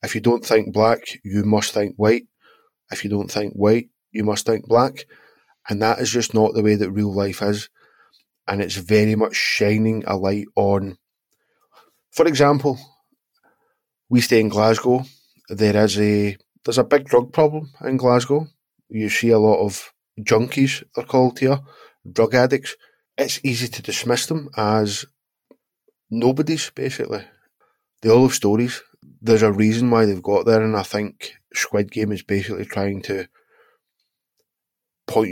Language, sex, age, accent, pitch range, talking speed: English, male, 20-39, British, 105-125 Hz, 160 wpm